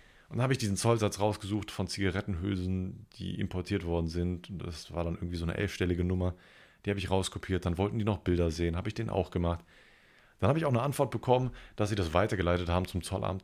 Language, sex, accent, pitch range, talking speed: German, male, German, 85-105 Hz, 225 wpm